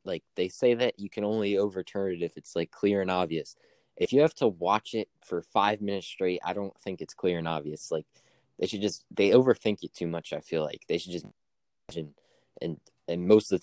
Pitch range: 85-100 Hz